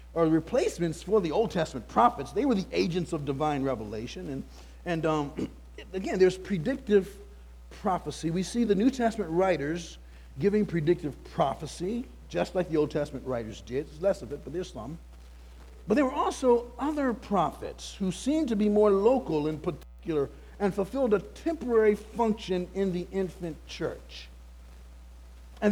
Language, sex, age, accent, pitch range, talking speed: English, male, 50-69, American, 125-210 Hz, 160 wpm